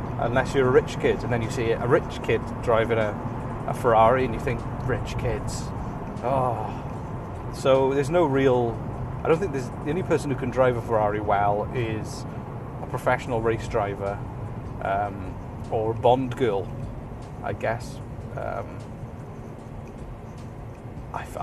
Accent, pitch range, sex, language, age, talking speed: British, 115-130 Hz, male, English, 30-49, 145 wpm